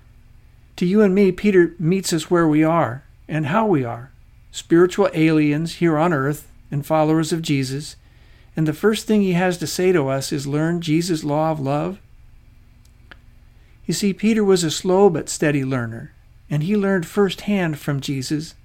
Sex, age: male, 50-69